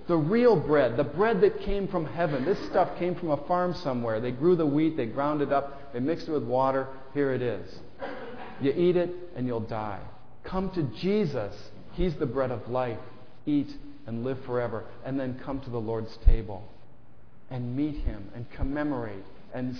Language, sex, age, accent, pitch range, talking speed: English, male, 40-59, American, 115-160 Hz, 190 wpm